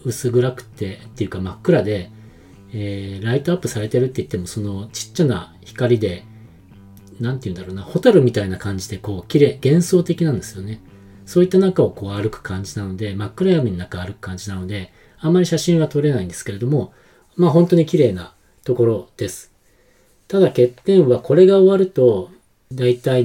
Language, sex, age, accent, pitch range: Japanese, male, 40-59, native, 100-150 Hz